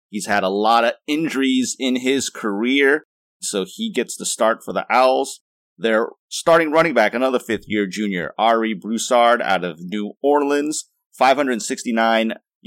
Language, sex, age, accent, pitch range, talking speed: English, male, 30-49, American, 105-130 Hz, 145 wpm